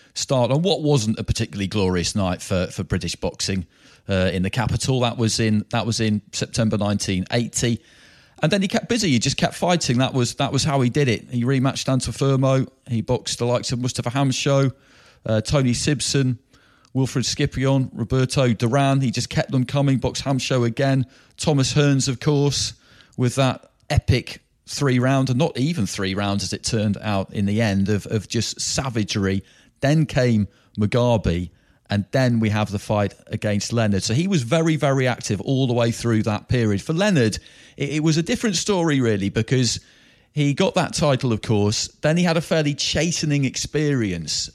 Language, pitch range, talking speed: English, 110-140 Hz, 185 wpm